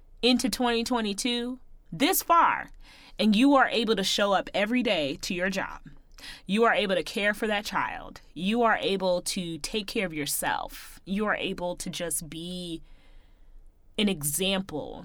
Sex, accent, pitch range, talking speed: female, American, 185-270 Hz, 160 wpm